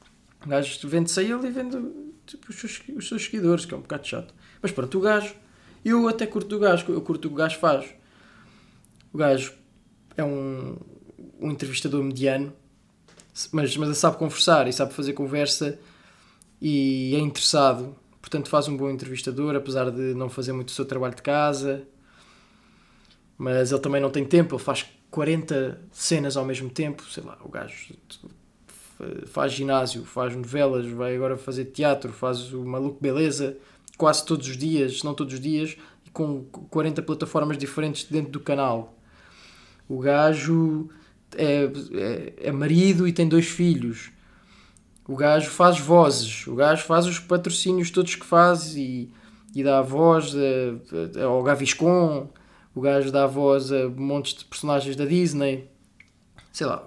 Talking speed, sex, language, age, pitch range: 160 wpm, male, Portuguese, 20-39, 135-165 Hz